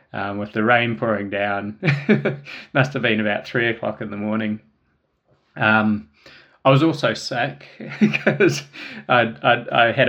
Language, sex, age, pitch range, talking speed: English, male, 20-39, 110-120 Hz, 145 wpm